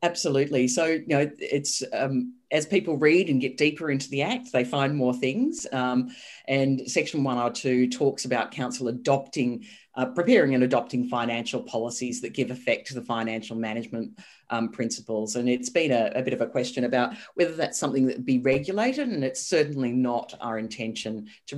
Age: 40-59